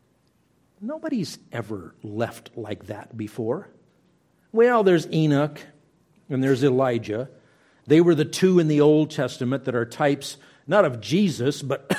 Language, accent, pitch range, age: English, American, 120-155 Hz, 50-69